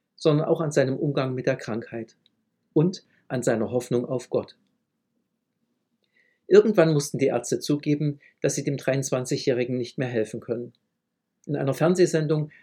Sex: male